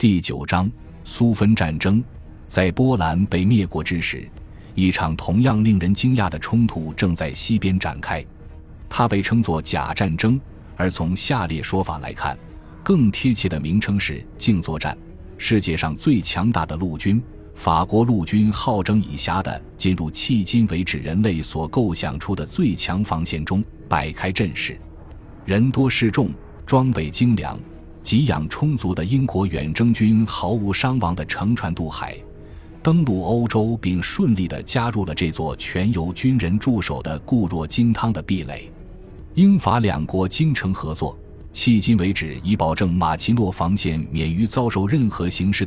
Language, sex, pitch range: Chinese, male, 80-110 Hz